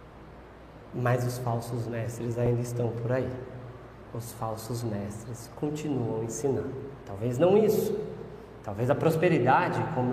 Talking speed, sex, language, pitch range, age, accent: 125 wpm, male, Portuguese, 120-140 Hz, 20-39, Brazilian